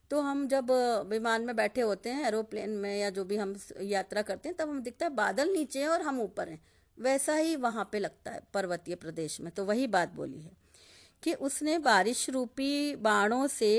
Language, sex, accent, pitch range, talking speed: Hindi, female, native, 210-295 Hz, 210 wpm